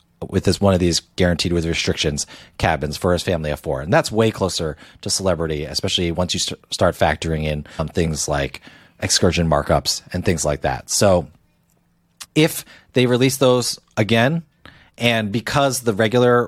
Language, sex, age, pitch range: English, male, 30-49, 90-125 Hz